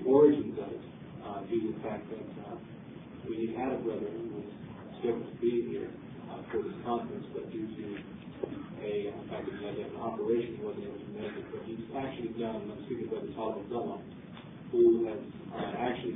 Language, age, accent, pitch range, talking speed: English, 40-59, American, 115-130 Hz, 205 wpm